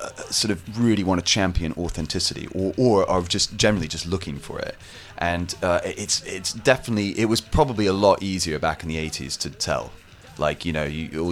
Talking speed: 200 wpm